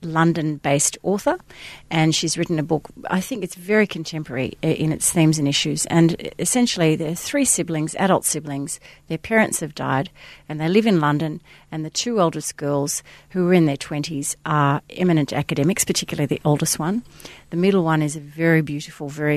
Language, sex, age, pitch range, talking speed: English, female, 40-59, 150-180 Hz, 185 wpm